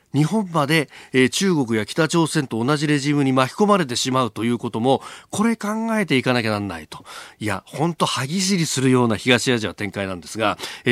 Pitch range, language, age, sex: 110-155 Hz, Japanese, 40-59, male